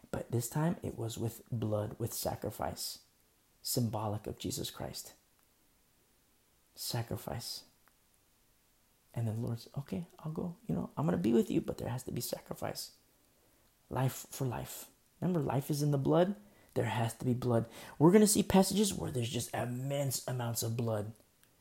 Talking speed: 165 wpm